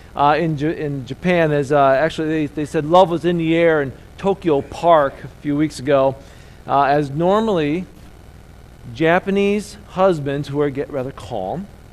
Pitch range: 140-180 Hz